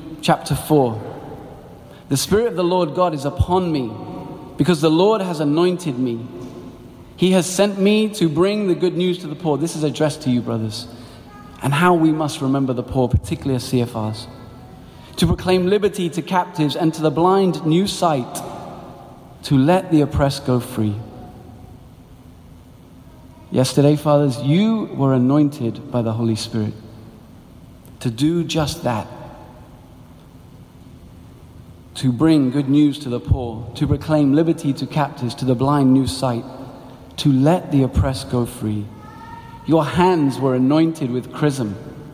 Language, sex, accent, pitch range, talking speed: English, male, British, 125-165 Hz, 150 wpm